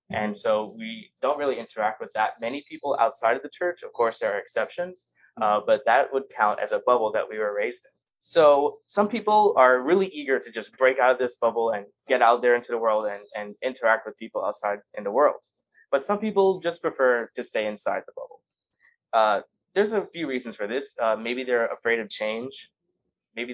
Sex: male